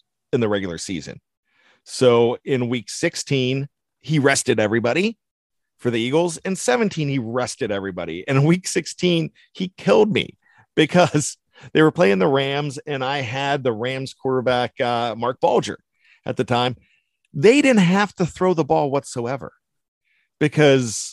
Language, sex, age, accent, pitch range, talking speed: English, male, 40-59, American, 115-140 Hz, 150 wpm